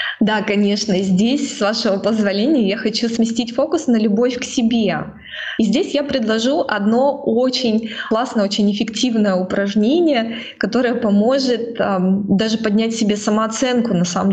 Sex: female